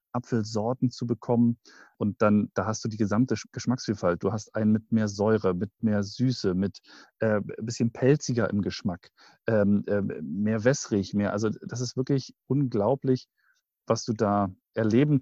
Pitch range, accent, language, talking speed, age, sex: 110-130 Hz, German, German, 160 wpm, 40-59, male